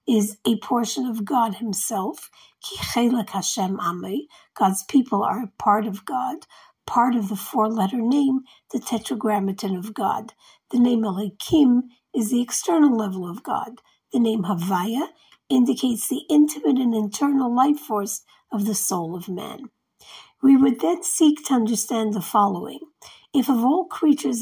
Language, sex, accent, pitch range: English, female, American, 210-270 Hz